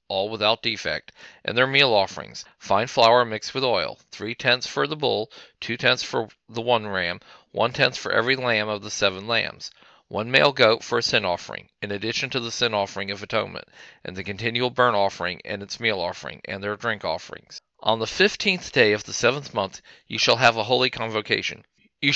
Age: 40-59